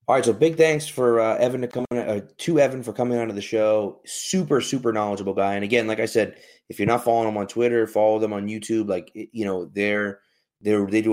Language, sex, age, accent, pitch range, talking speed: English, male, 30-49, American, 100-125 Hz, 255 wpm